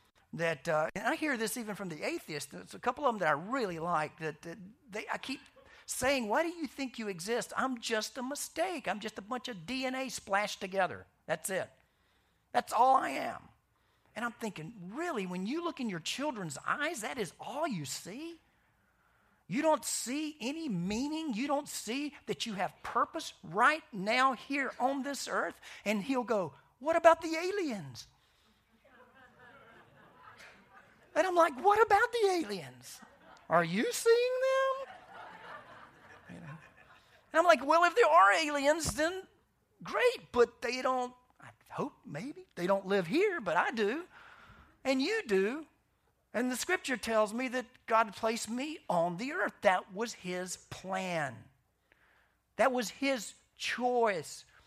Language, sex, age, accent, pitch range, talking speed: English, male, 50-69, American, 195-300 Hz, 160 wpm